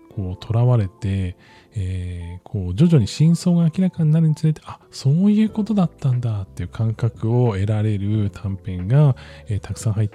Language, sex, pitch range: Japanese, male, 95-145 Hz